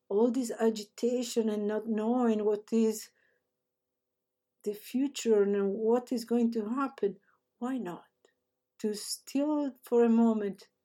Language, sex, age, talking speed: English, female, 50-69, 125 wpm